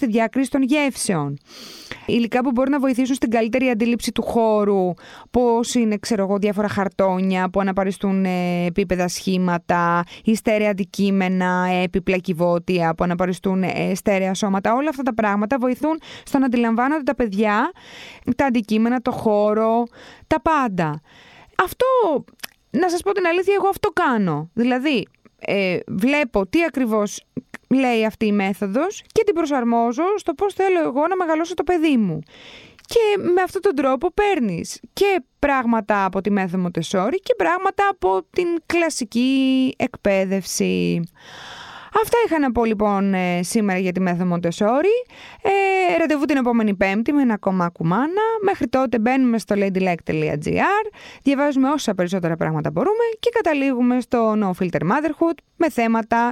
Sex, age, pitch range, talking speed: female, 20-39, 195-300 Hz, 140 wpm